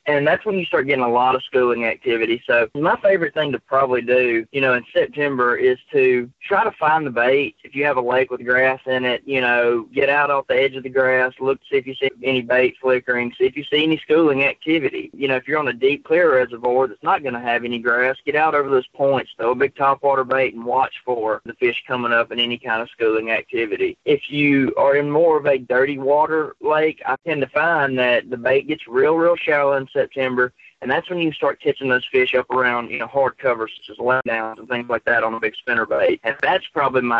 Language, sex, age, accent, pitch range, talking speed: English, male, 20-39, American, 125-145 Hz, 250 wpm